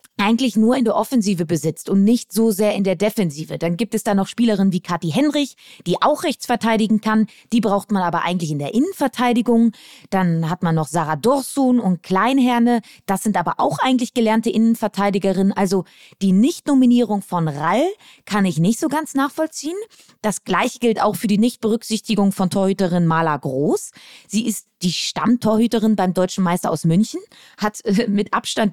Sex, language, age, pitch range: female, German, 20-39, 190-240 Hz